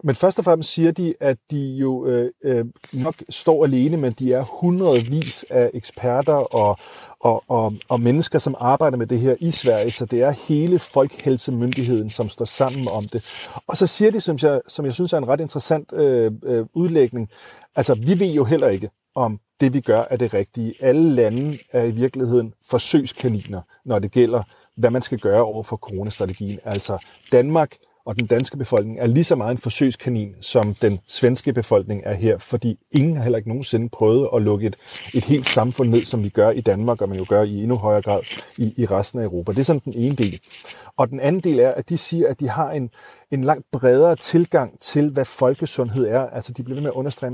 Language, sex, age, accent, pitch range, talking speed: Danish, male, 40-59, native, 115-145 Hz, 215 wpm